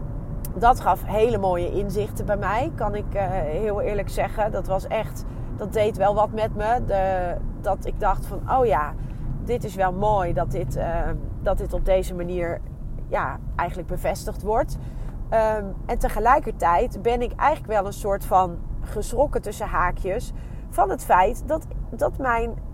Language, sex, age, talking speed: Dutch, female, 30-49, 170 wpm